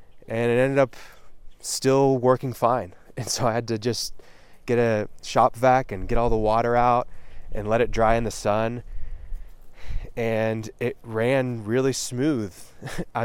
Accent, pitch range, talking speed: American, 90-120 Hz, 165 wpm